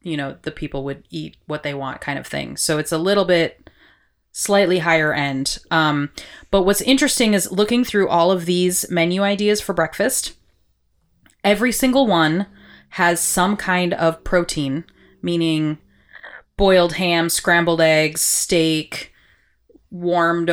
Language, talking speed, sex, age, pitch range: English, 145 wpm, female, 30-49, 155-185 Hz